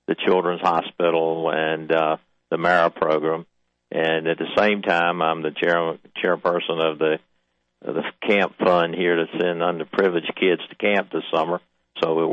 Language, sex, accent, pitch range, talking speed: English, male, American, 80-90 Hz, 165 wpm